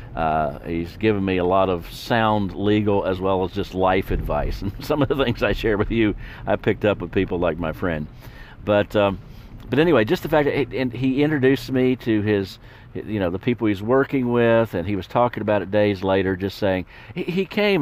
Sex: male